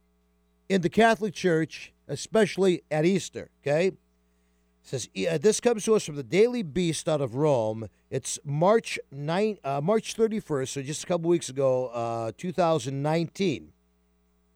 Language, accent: English, American